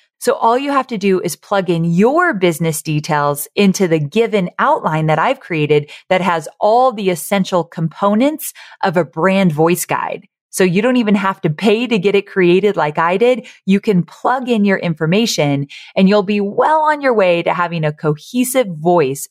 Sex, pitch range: female, 160-220 Hz